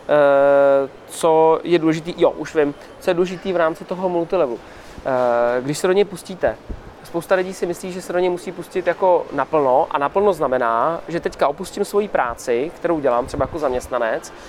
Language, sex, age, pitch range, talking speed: Czech, male, 20-39, 140-180 Hz, 185 wpm